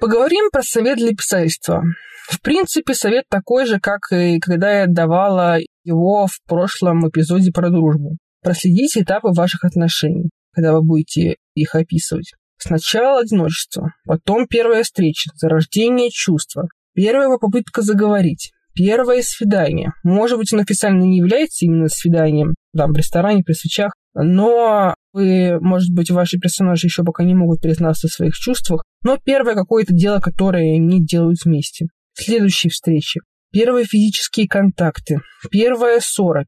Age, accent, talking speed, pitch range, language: 20-39, native, 140 wpm, 170-225 Hz, Russian